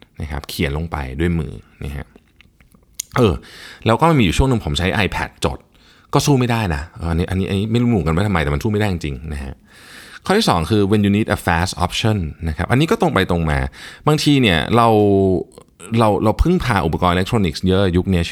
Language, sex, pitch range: Thai, male, 80-105 Hz